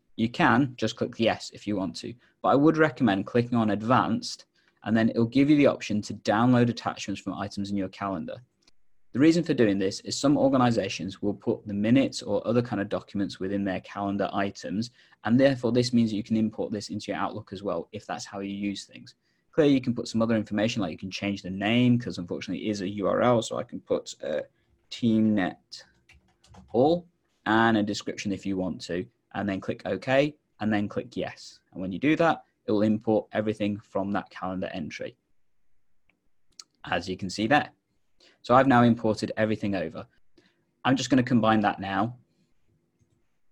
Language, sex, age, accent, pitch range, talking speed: English, male, 20-39, British, 100-120 Hz, 200 wpm